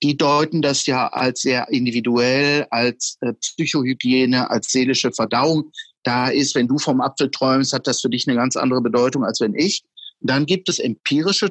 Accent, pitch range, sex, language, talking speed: German, 130-180 Hz, male, German, 180 wpm